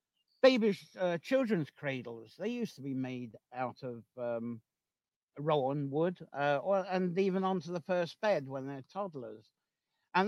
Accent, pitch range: British, 135-185 Hz